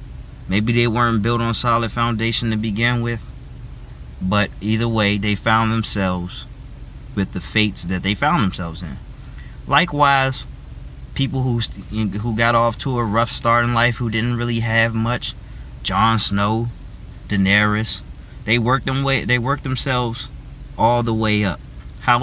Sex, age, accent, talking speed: male, 20-39, American, 150 wpm